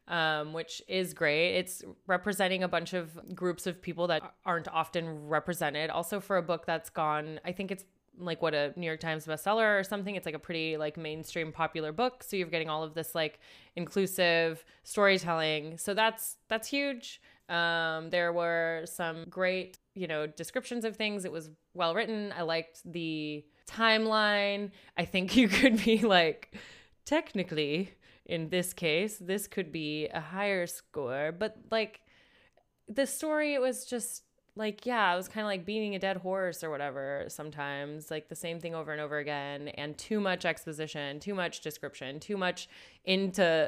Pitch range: 155-195 Hz